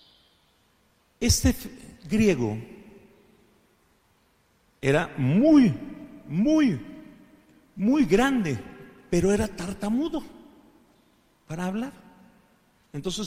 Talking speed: 60 wpm